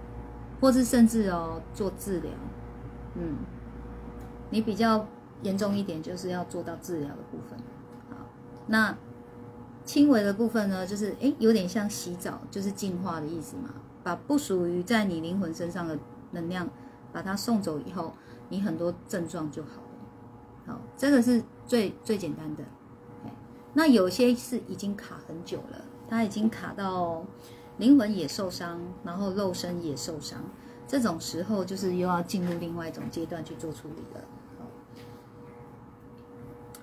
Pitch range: 165-215 Hz